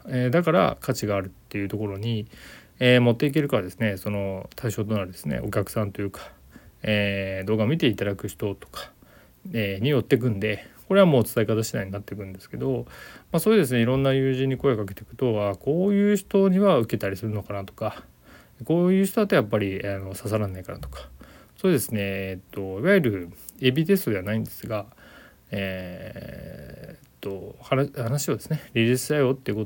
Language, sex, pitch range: Japanese, male, 100-135 Hz